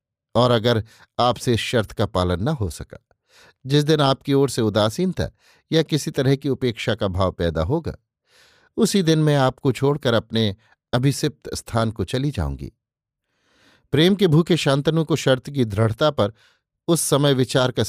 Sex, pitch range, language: male, 115-145 Hz, Hindi